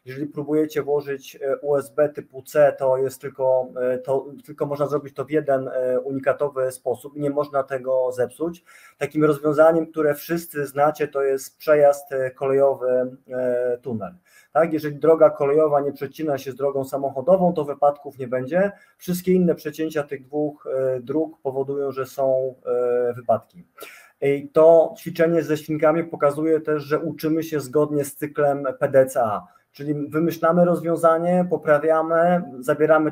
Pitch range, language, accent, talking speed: 135-155 Hz, Polish, native, 140 wpm